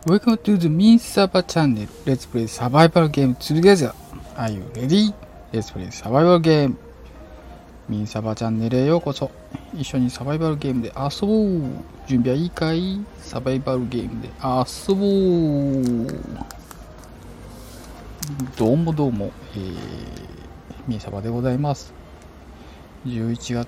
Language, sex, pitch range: Japanese, male, 105-150 Hz